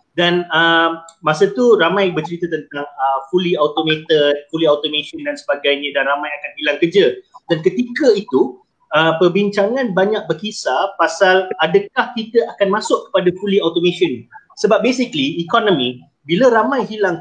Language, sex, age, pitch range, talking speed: Malay, male, 30-49, 165-240 Hz, 140 wpm